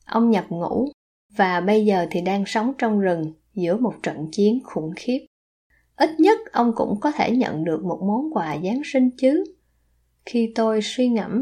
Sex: female